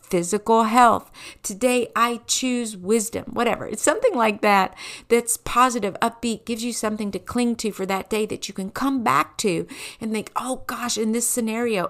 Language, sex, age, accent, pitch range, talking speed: English, female, 50-69, American, 195-240 Hz, 180 wpm